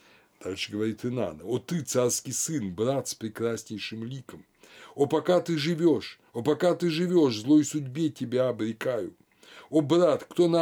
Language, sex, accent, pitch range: Russian, male, native, 105-155 Hz